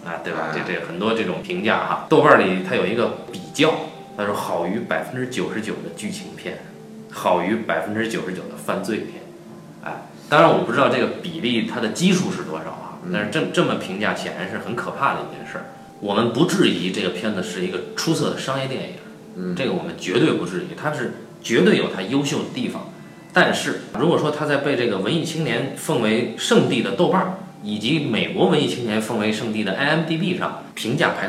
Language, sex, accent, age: Chinese, male, native, 20-39